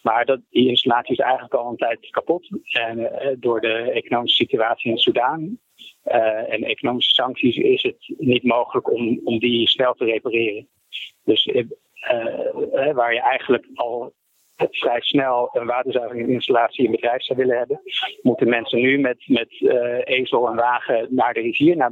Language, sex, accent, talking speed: Dutch, male, Dutch, 170 wpm